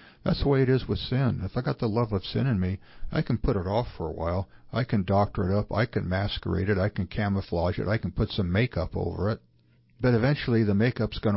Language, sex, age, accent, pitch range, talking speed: English, male, 60-79, American, 95-120 Hz, 260 wpm